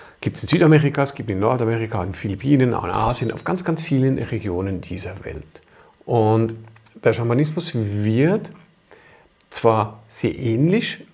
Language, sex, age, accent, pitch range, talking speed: German, male, 40-59, German, 110-155 Hz, 145 wpm